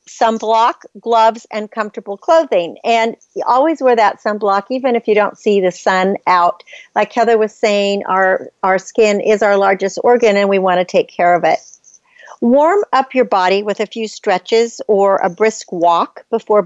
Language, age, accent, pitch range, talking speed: English, 50-69, American, 200-255 Hz, 185 wpm